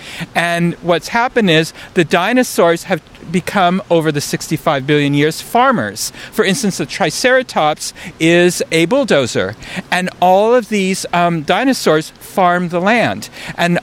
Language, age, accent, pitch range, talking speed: English, 50-69, American, 150-195 Hz, 135 wpm